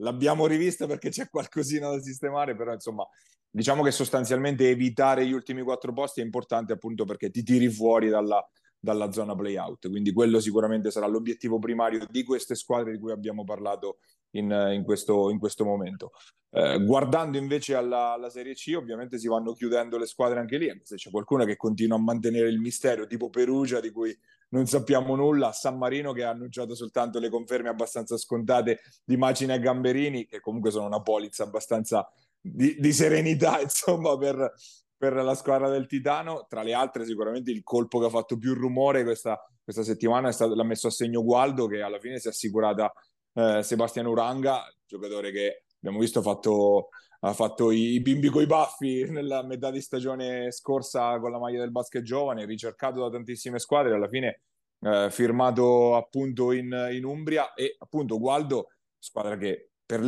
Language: Italian